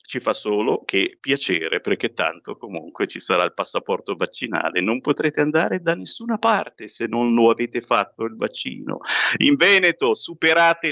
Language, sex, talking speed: Italian, male, 160 wpm